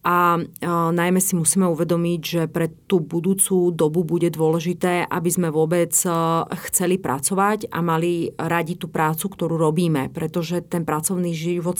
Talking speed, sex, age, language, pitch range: 140 wpm, female, 30-49, Slovak, 165-185 Hz